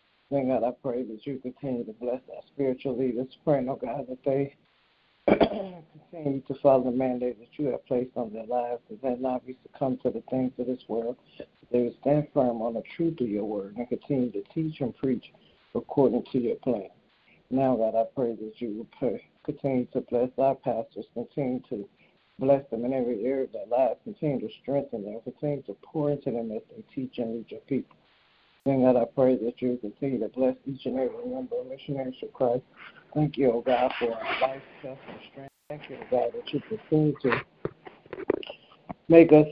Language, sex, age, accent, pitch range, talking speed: English, male, 60-79, American, 120-140 Hz, 205 wpm